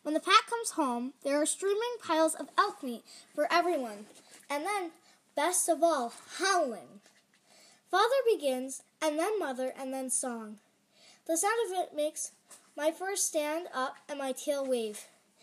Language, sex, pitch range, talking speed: English, female, 250-345 Hz, 160 wpm